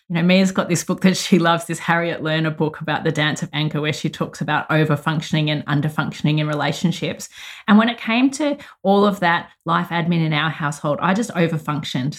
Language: English